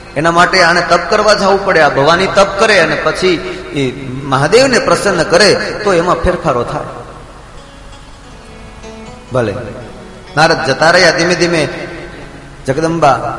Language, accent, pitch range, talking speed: Gujarati, native, 145-210 Hz, 110 wpm